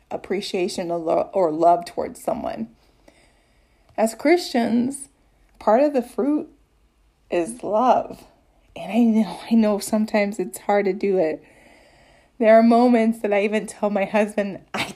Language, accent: English, American